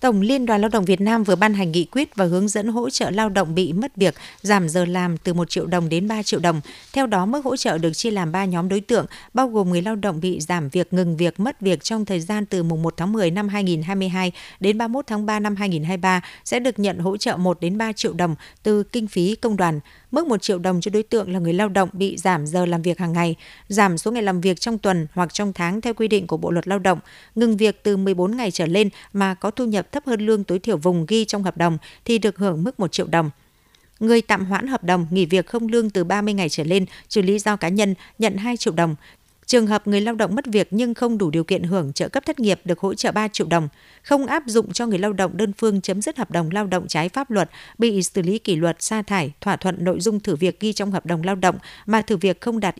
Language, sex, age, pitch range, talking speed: Vietnamese, female, 60-79, 180-220 Hz, 275 wpm